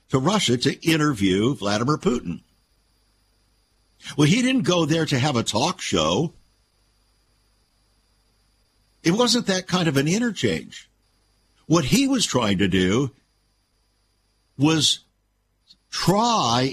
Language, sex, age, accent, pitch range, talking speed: English, male, 60-79, American, 100-160 Hz, 110 wpm